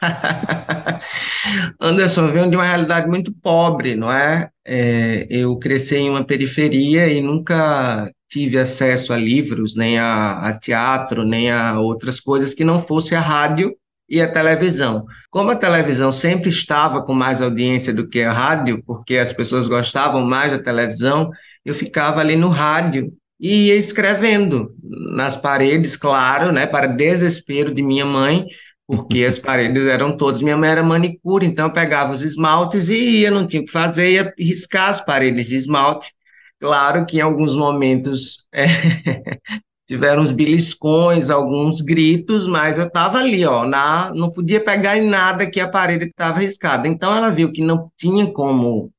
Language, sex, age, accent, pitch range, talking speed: Portuguese, male, 20-39, Brazilian, 130-170 Hz, 160 wpm